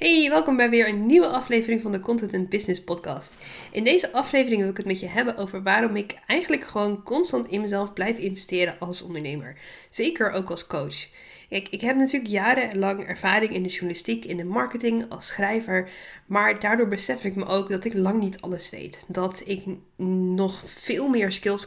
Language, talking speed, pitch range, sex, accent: Dutch, 195 wpm, 170-215 Hz, female, Dutch